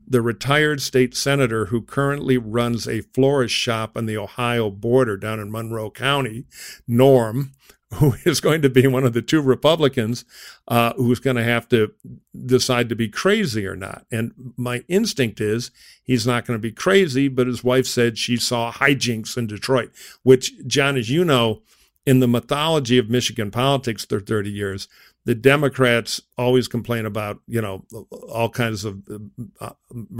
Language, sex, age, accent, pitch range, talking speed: English, male, 50-69, American, 115-135 Hz, 170 wpm